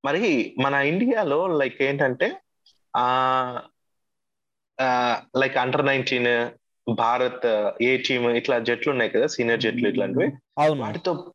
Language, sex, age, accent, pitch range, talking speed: Telugu, male, 20-39, native, 120-155 Hz, 105 wpm